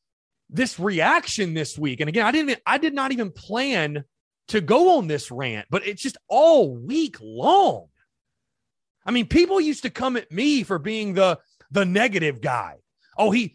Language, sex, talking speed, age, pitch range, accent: English, male, 180 wpm, 30-49, 180-260 Hz, American